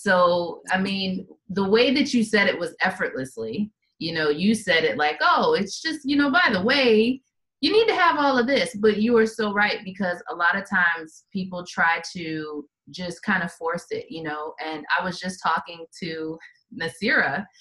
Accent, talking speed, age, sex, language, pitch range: American, 200 wpm, 30-49, female, English, 170-225 Hz